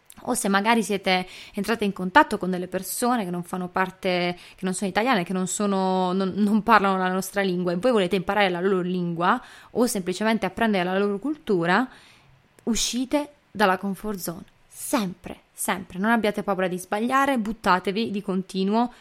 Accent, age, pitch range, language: native, 20-39, 185-225 Hz, Italian